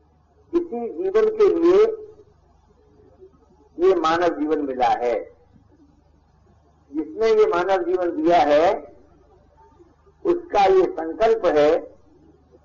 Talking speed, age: 90 wpm, 60-79